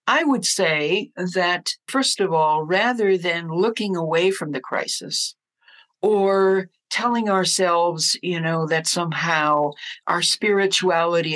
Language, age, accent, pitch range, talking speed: English, 60-79, American, 165-225 Hz, 120 wpm